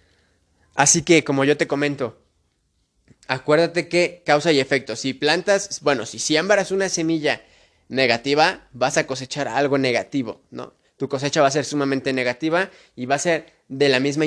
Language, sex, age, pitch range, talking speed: English, male, 20-39, 135-165 Hz, 170 wpm